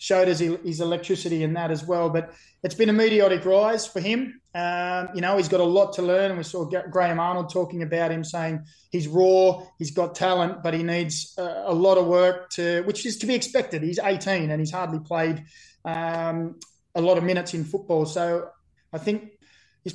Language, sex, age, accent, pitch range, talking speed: English, male, 20-39, Australian, 165-180 Hz, 205 wpm